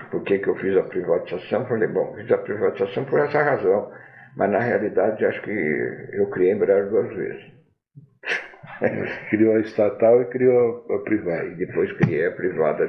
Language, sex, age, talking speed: Portuguese, male, 60-79, 175 wpm